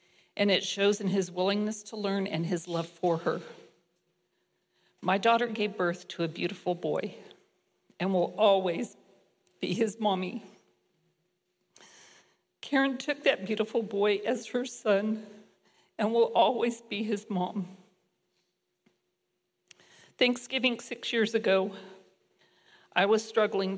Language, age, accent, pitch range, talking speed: English, 50-69, American, 185-215 Hz, 120 wpm